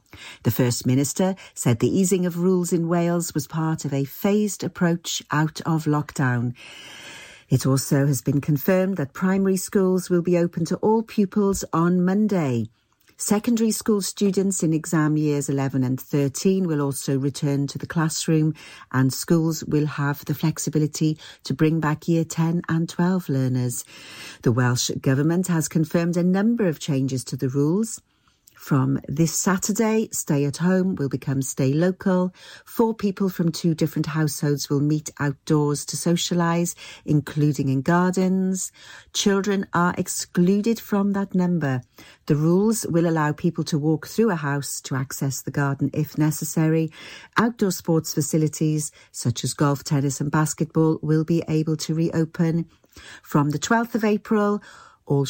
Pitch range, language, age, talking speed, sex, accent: 145-185 Hz, English, 50-69, 155 wpm, female, British